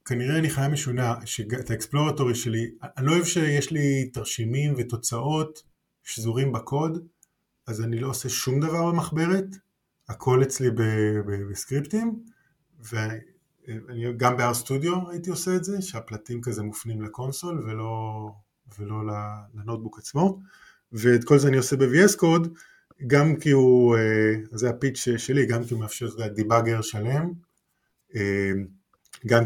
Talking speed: 130 wpm